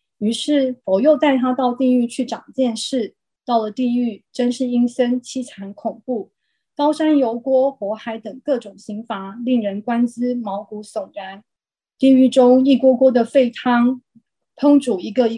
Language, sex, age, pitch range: Chinese, female, 30-49, 220-265 Hz